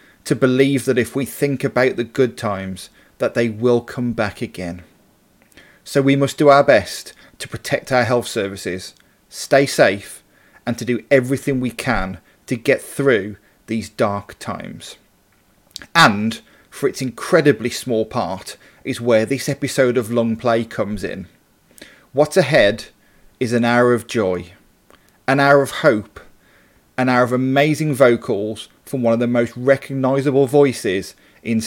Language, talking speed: English, 150 wpm